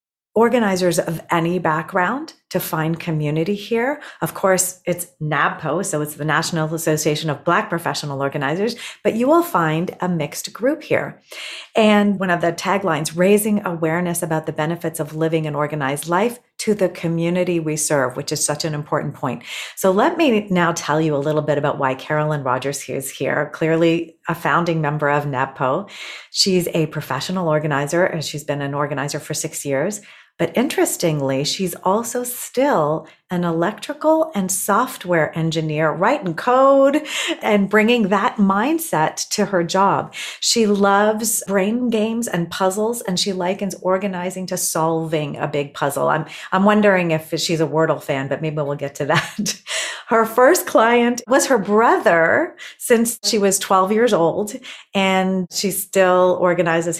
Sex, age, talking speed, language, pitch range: female, 40-59, 160 wpm, English, 155-210 Hz